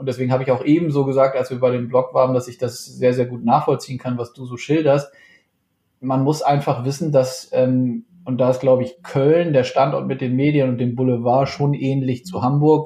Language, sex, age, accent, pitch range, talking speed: German, male, 20-39, German, 125-140 Hz, 235 wpm